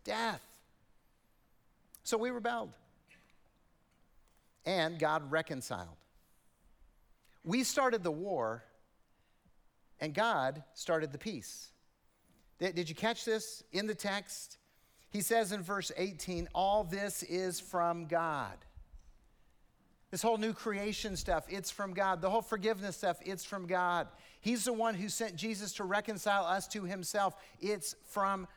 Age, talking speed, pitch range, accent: 50-69, 130 wpm, 165-210 Hz, American